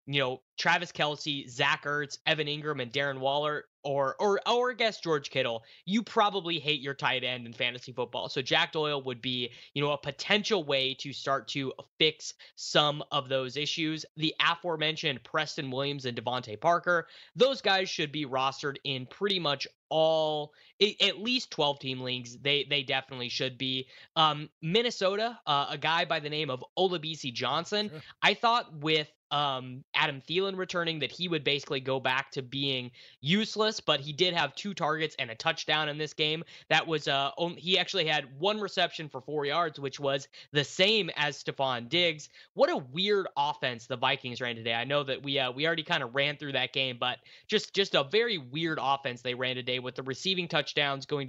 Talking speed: 190 wpm